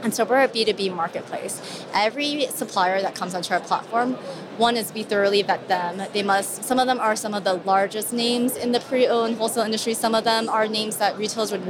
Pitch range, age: 195-240 Hz, 30-49